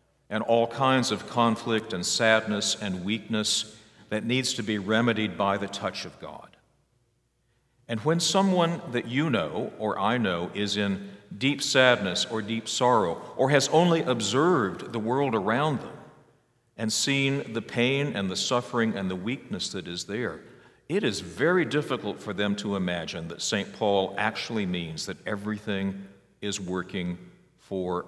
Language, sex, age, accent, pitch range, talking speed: English, male, 50-69, American, 95-125 Hz, 160 wpm